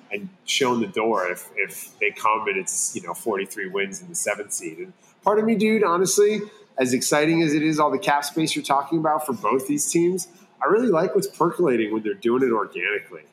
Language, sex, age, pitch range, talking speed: English, male, 30-49, 120-200 Hz, 225 wpm